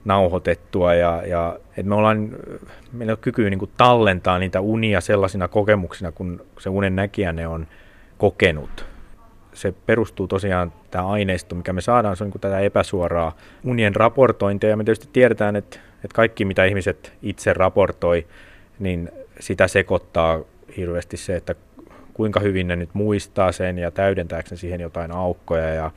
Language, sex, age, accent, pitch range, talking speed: Finnish, male, 30-49, native, 90-110 Hz, 145 wpm